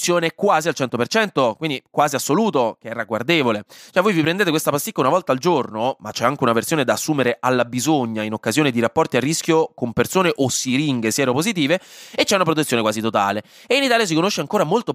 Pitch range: 125-195 Hz